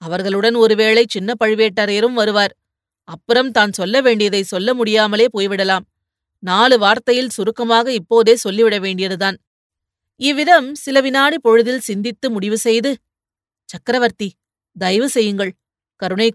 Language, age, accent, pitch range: Tamil, 30-49, native, 185-240 Hz